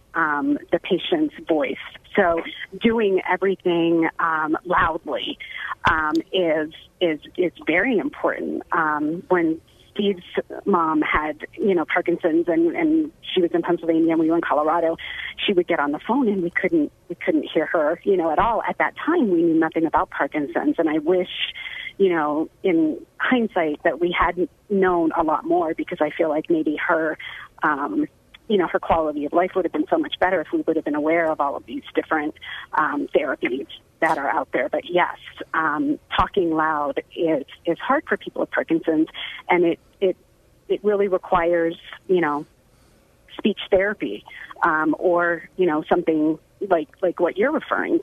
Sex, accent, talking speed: female, American, 175 wpm